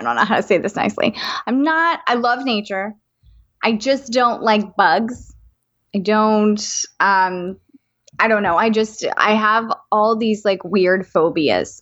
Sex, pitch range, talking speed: female, 210-275 Hz, 170 wpm